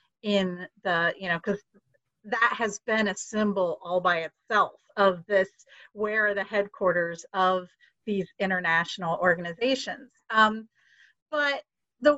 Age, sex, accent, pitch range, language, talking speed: 40-59, female, American, 195-250 Hz, English, 130 wpm